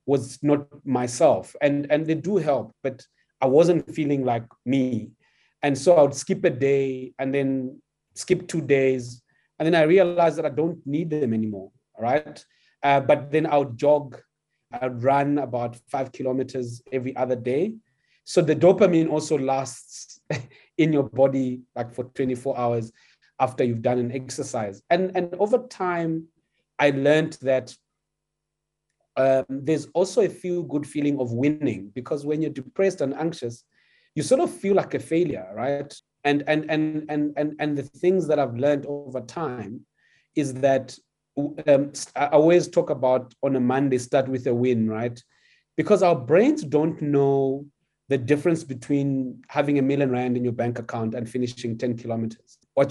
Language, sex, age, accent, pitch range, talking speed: English, male, 30-49, South African, 130-155 Hz, 170 wpm